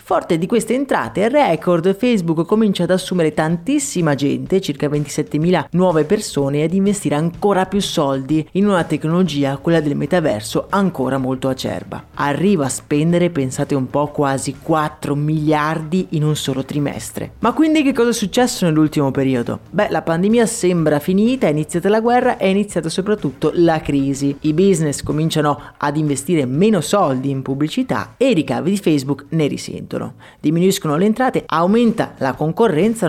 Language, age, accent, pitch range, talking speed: Italian, 30-49, native, 150-195 Hz, 160 wpm